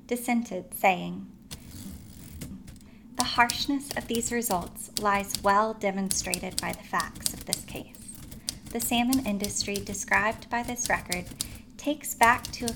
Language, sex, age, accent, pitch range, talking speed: English, female, 10-29, American, 200-245 Hz, 125 wpm